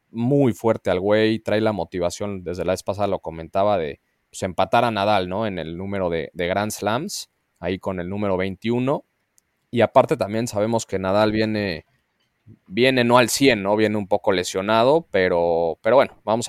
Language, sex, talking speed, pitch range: Spanish, male, 185 wpm, 95-115 Hz